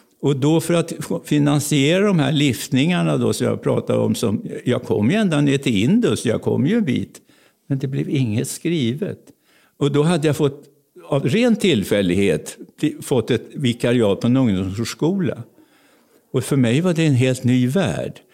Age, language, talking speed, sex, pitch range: 60-79, Swedish, 175 wpm, male, 120-160 Hz